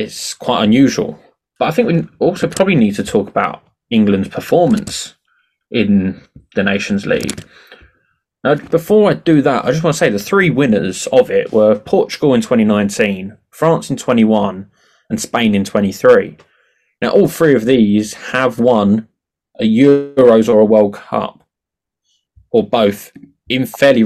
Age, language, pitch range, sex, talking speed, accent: 20-39, English, 105-170 Hz, male, 155 wpm, British